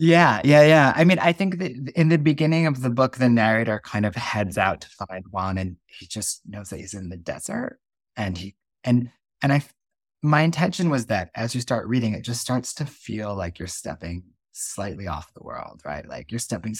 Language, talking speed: English, 220 wpm